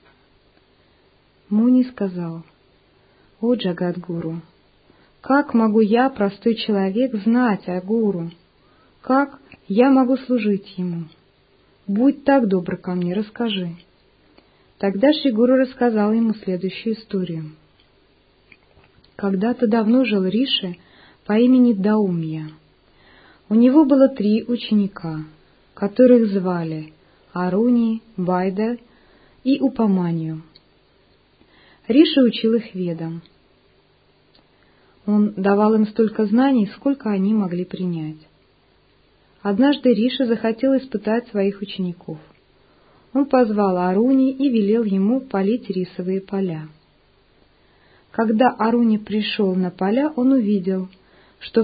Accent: native